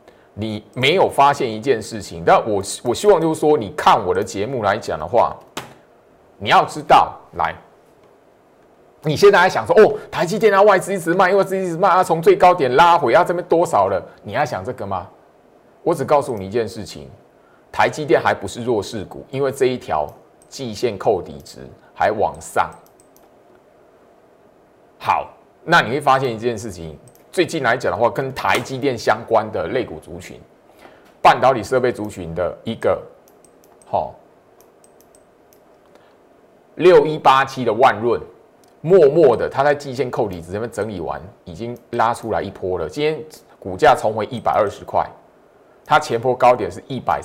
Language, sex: Chinese, male